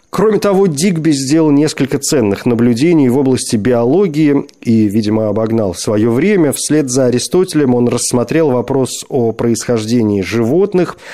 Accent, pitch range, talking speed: native, 110-145 Hz, 130 wpm